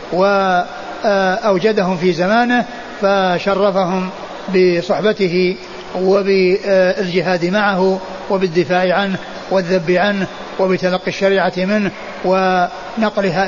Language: Arabic